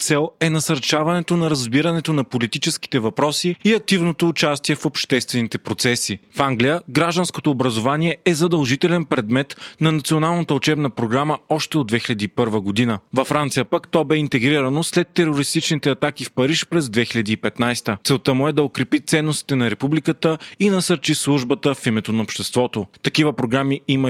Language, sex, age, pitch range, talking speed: Bulgarian, male, 30-49, 120-160 Hz, 150 wpm